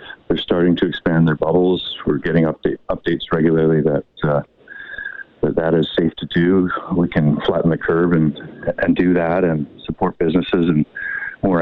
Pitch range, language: 80-90 Hz, English